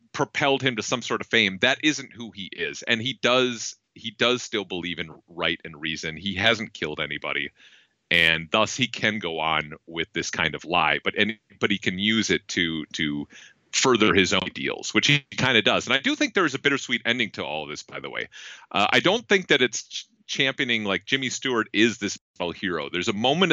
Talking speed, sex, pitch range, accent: 220 wpm, male, 95-125 Hz, American